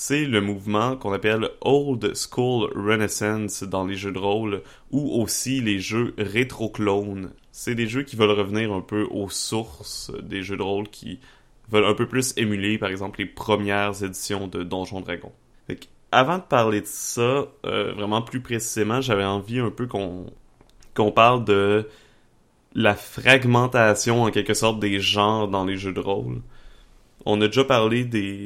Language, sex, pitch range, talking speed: French, male, 100-115 Hz, 170 wpm